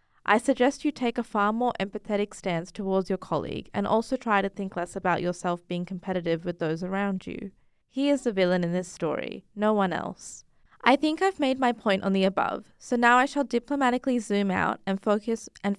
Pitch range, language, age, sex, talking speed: 185-235 Hz, English, 20-39, female, 200 wpm